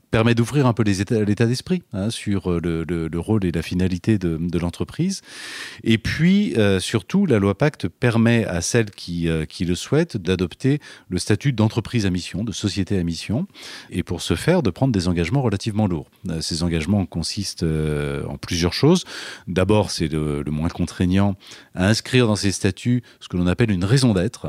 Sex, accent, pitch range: male, French, 85-120 Hz